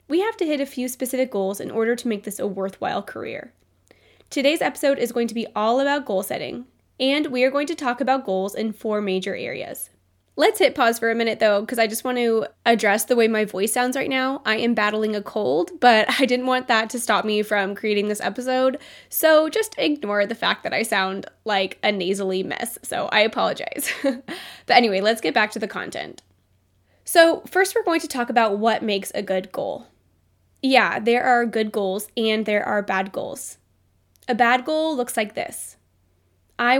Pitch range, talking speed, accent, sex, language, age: 210-265 Hz, 205 wpm, American, female, English, 10-29